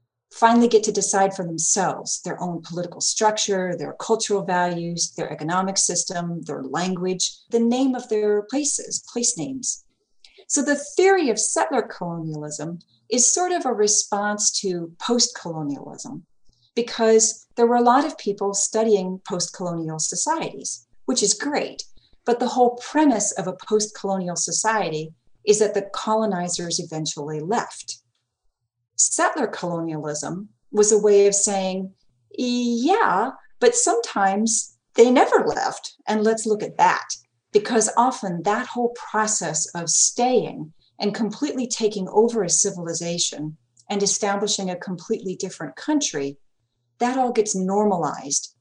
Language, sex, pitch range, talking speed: English, female, 170-225 Hz, 130 wpm